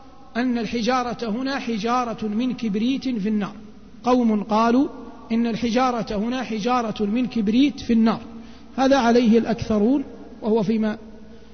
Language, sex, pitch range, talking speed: Arabic, male, 220-250 Hz, 120 wpm